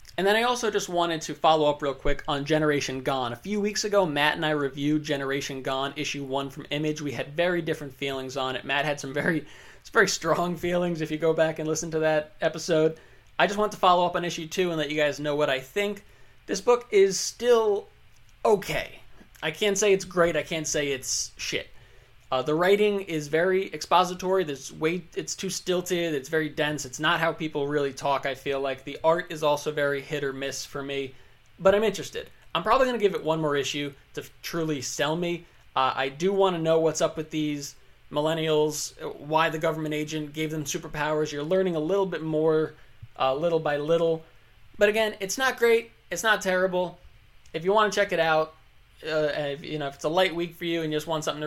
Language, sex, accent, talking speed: English, male, American, 225 wpm